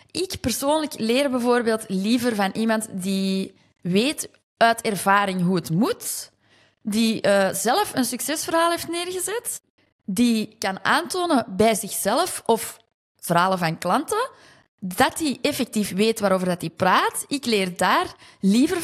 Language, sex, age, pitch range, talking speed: Dutch, female, 20-39, 195-270 Hz, 130 wpm